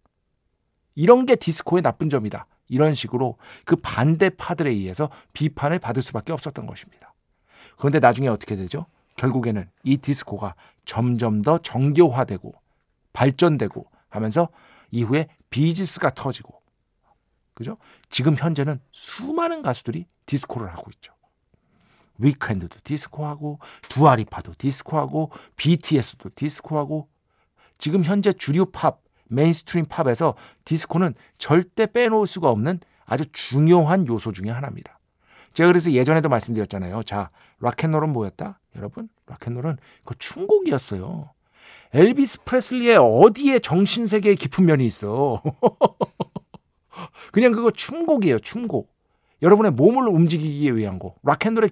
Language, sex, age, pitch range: Korean, male, 50-69, 125-180 Hz